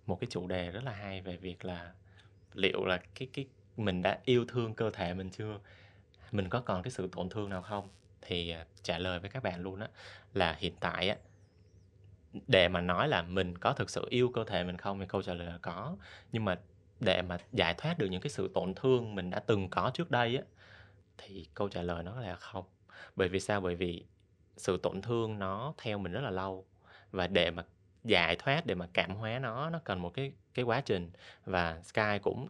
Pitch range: 90-110 Hz